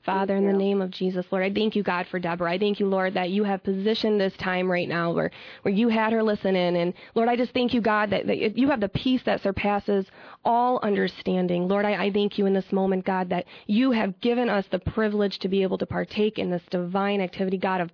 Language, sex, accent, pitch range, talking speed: English, female, American, 190-230 Hz, 250 wpm